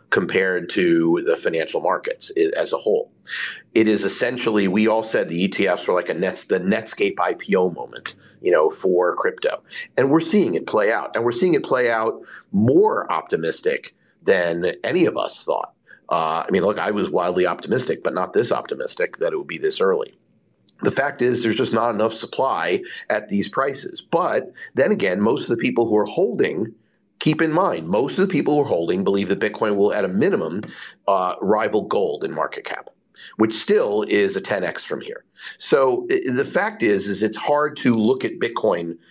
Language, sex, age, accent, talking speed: English, male, 50-69, American, 195 wpm